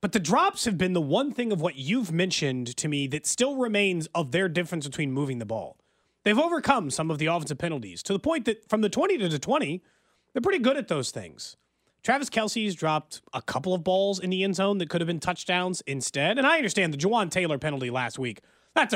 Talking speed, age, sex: 235 wpm, 30-49, male